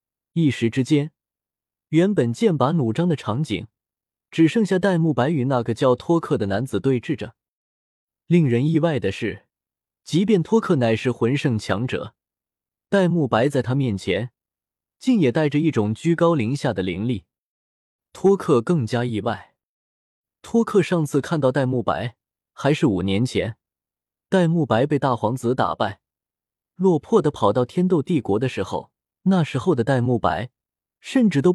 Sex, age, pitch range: male, 20-39, 110-165 Hz